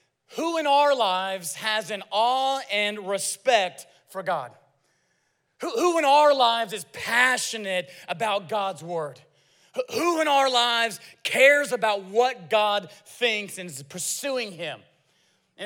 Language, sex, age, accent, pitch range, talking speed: English, male, 30-49, American, 175-230 Hz, 140 wpm